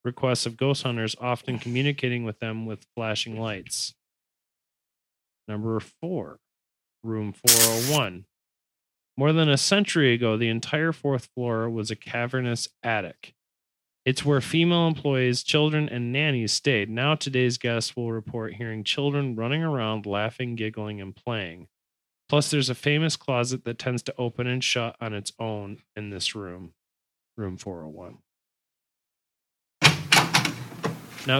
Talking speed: 130 wpm